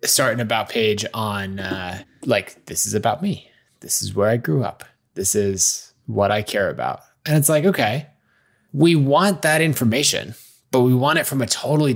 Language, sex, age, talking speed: English, male, 20-39, 185 wpm